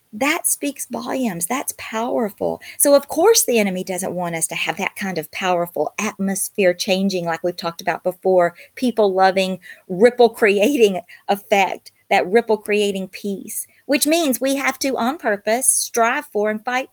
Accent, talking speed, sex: American, 165 wpm, female